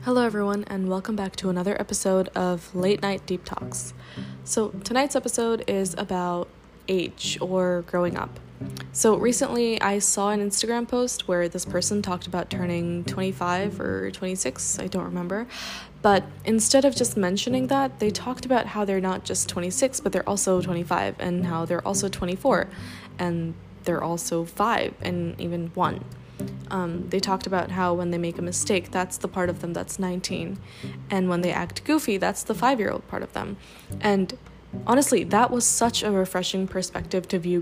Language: English